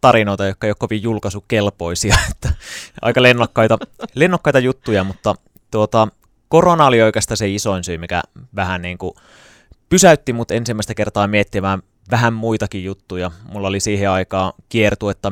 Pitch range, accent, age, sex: 95-115 Hz, native, 30-49, male